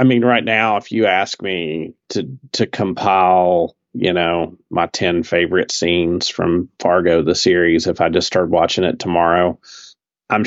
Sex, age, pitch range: male, 40-59, 85-120 Hz